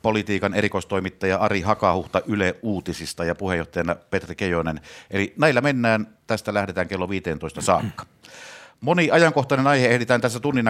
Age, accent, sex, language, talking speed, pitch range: 60-79, native, male, Finnish, 135 wpm, 95-120 Hz